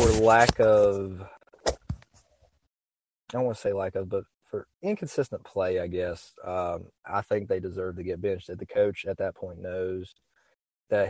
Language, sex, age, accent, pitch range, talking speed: English, male, 20-39, American, 95-105 Hz, 175 wpm